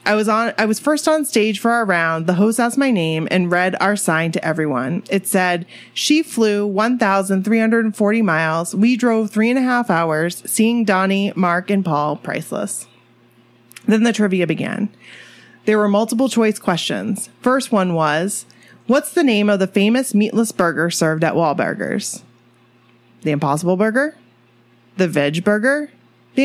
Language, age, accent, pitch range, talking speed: English, 30-49, American, 170-225 Hz, 160 wpm